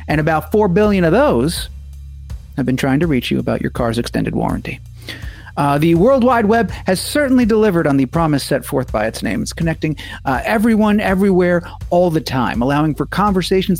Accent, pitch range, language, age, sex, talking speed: American, 125-180 Hz, English, 40-59, male, 190 wpm